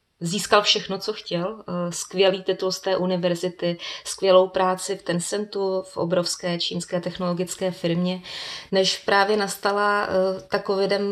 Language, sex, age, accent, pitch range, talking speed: Czech, female, 20-39, native, 175-195 Hz, 120 wpm